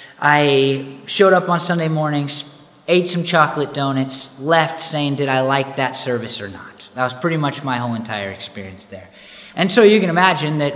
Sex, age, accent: male, 30-49, American